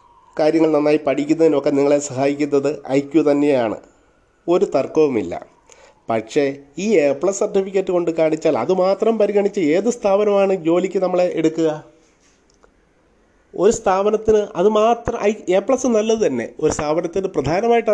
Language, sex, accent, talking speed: Malayalam, male, native, 110 wpm